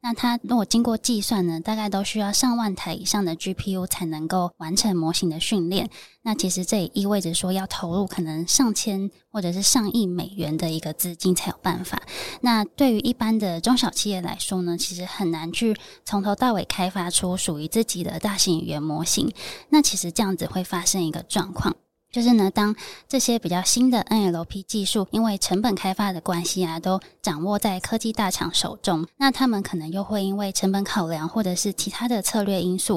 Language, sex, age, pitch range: Chinese, female, 20-39, 175-220 Hz